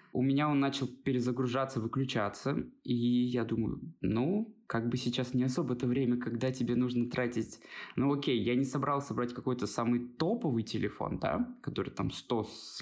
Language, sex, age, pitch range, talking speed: Russian, male, 20-39, 120-140 Hz, 170 wpm